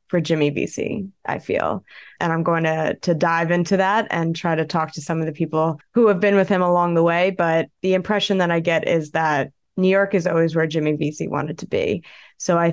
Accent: American